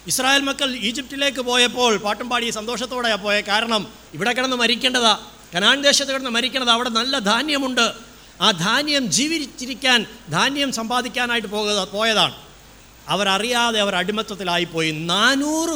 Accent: native